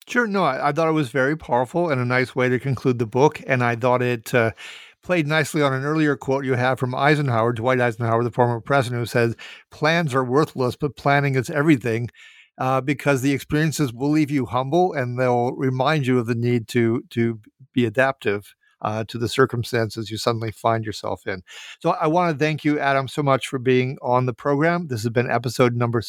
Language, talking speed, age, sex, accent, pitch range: English, 215 wpm, 50-69, male, American, 120-145 Hz